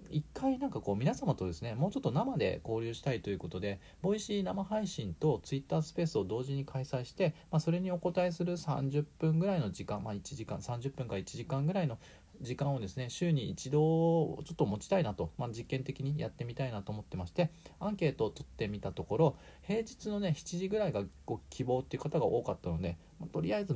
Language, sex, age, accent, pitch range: Japanese, male, 40-59, native, 105-160 Hz